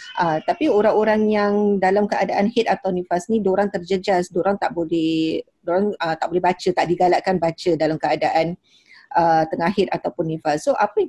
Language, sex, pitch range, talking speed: Malay, female, 180-225 Hz, 180 wpm